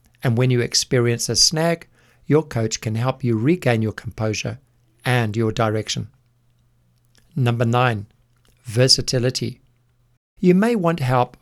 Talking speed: 125 wpm